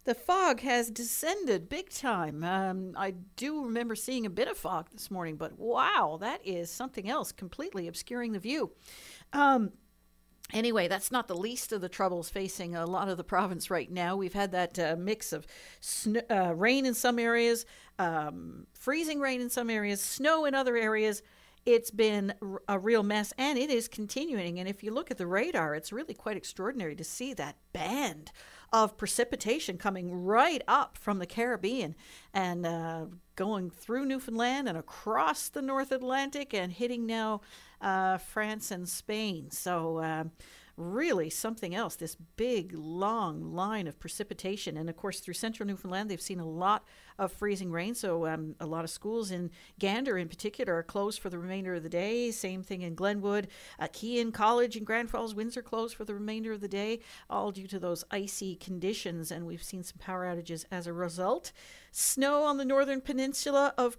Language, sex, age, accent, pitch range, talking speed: English, female, 50-69, American, 180-235 Hz, 185 wpm